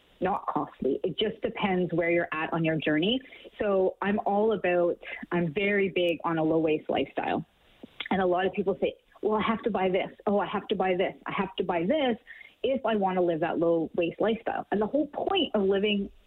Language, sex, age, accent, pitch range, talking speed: English, female, 30-49, American, 175-215 Hz, 225 wpm